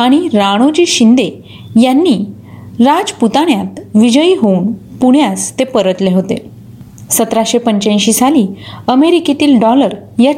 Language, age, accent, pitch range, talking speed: Marathi, 30-49, native, 210-275 Hz, 100 wpm